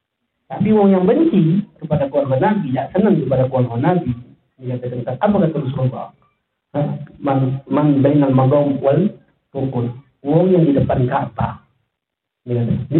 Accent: native